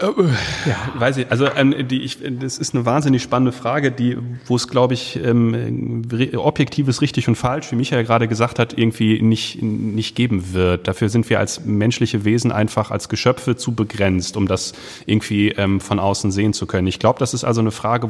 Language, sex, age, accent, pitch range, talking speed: German, male, 30-49, German, 105-125 Hz, 190 wpm